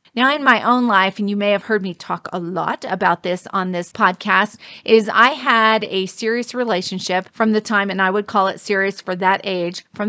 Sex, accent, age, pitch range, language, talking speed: female, American, 30-49, 190-230 Hz, English, 225 wpm